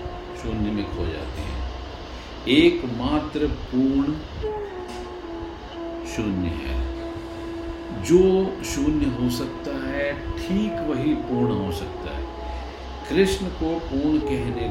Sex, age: male, 50-69